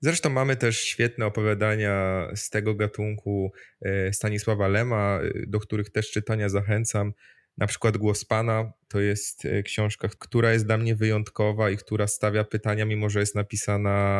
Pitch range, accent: 100-110 Hz, native